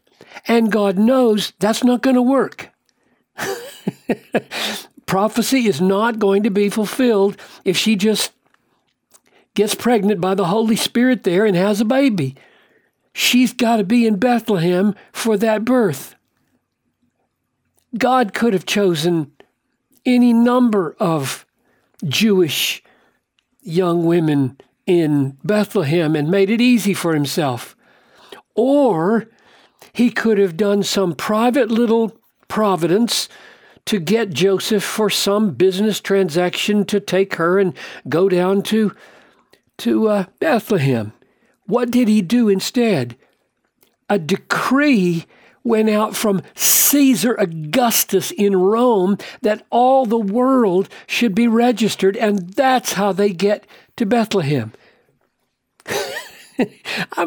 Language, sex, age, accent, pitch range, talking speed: English, male, 60-79, American, 190-235 Hz, 115 wpm